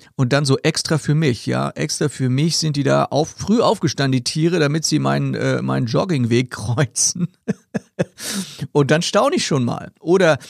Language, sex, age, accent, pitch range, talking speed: German, male, 40-59, German, 115-150 Hz, 175 wpm